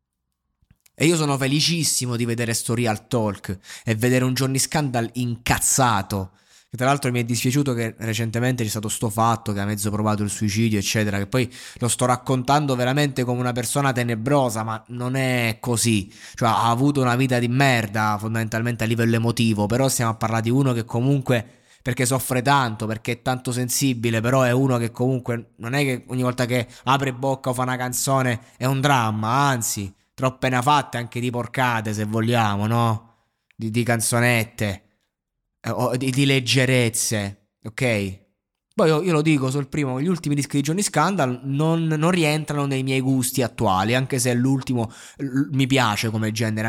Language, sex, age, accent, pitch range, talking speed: Italian, male, 20-39, native, 110-130 Hz, 185 wpm